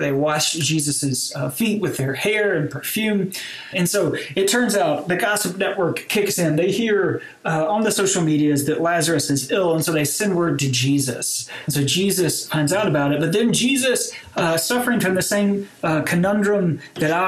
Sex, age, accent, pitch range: male, 30-49, American, 155-205 Hz